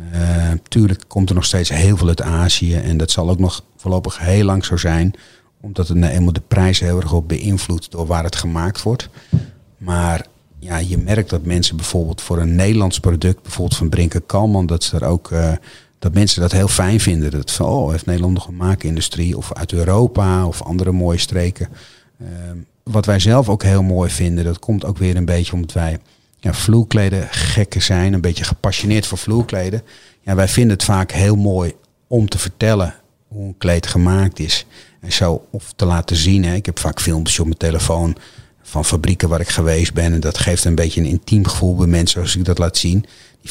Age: 40-59